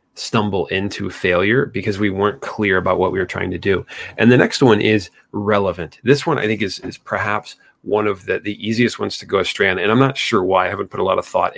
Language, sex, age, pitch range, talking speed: English, male, 30-49, 100-125 Hz, 255 wpm